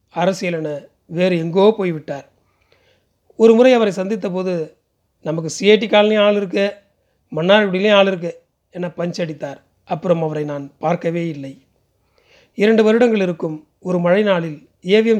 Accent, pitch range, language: native, 160-210 Hz, Tamil